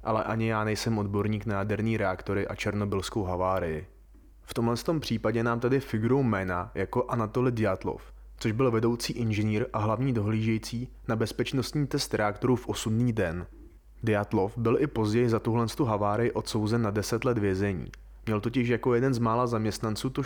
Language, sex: Czech, male